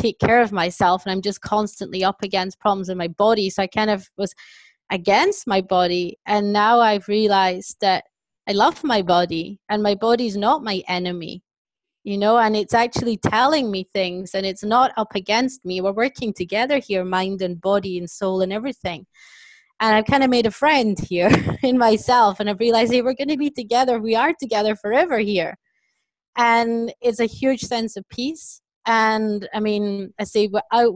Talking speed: 195 wpm